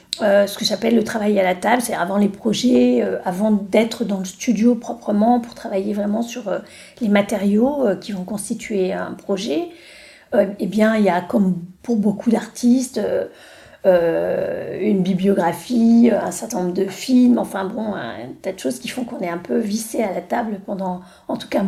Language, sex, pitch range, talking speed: French, female, 200-255 Hz, 195 wpm